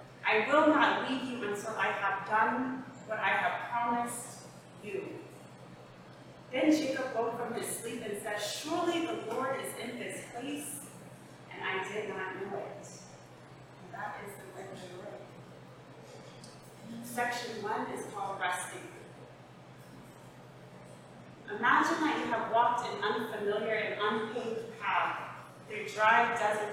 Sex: female